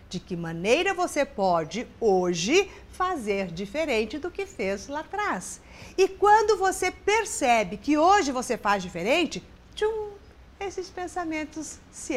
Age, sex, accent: 50-69, female, Brazilian